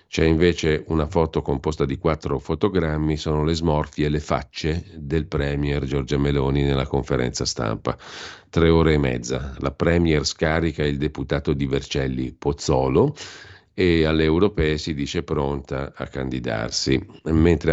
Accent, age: native, 50-69